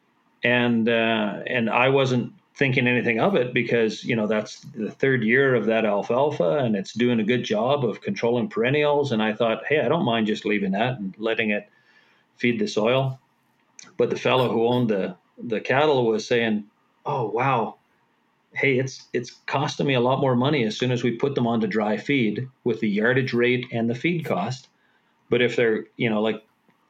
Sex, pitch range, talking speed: male, 110-130 Hz, 195 wpm